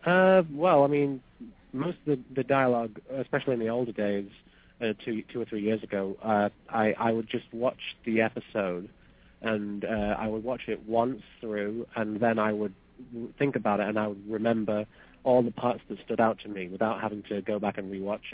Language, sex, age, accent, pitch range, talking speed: English, male, 30-49, British, 100-115 Hz, 205 wpm